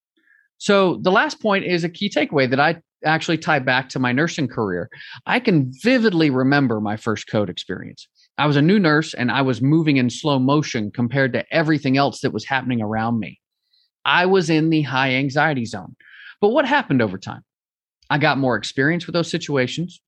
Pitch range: 140-210 Hz